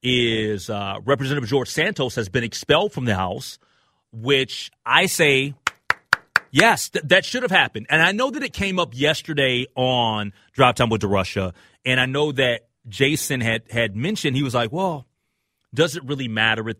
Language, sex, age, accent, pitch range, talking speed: English, male, 30-49, American, 115-160 Hz, 180 wpm